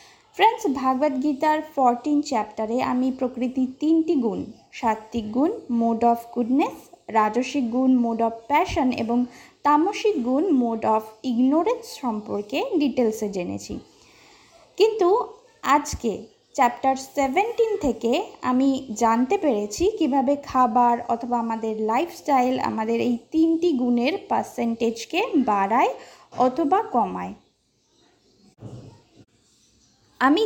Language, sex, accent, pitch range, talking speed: Bengali, female, native, 235-300 Hz, 100 wpm